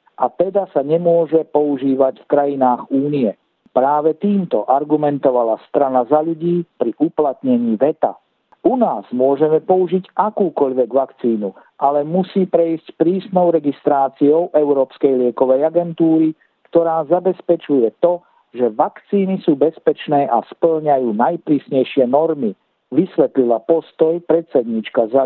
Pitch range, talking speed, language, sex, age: 135-165 Hz, 110 wpm, Slovak, male, 50-69